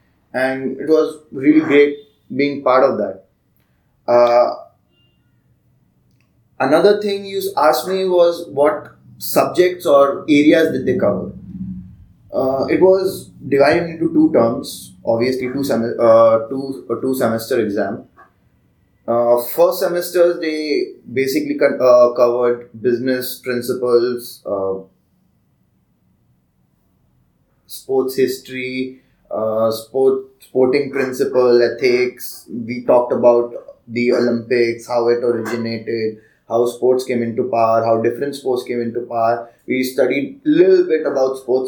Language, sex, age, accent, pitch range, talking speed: English, male, 20-39, Indian, 120-145 Hz, 120 wpm